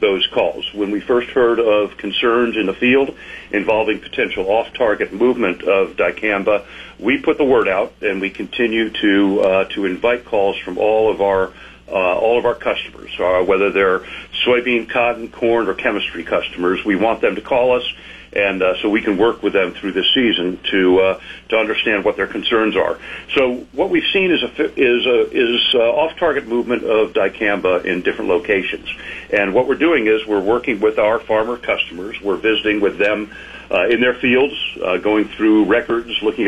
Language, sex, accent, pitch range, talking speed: English, male, American, 105-125 Hz, 190 wpm